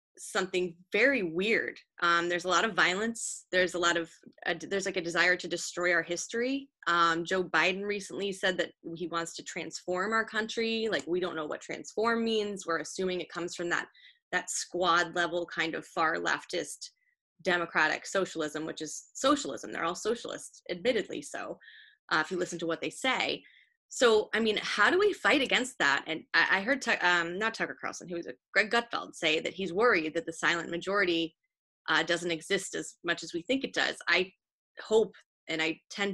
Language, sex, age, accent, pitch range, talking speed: English, female, 20-39, American, 170-210 Hz, 190 wpm